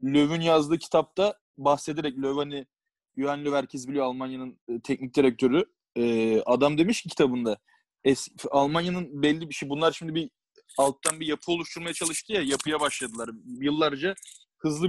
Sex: male